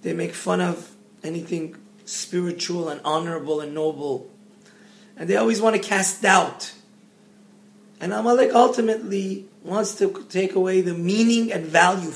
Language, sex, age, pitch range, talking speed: English, male, 30-49, 170-210 Hz, 140 wpm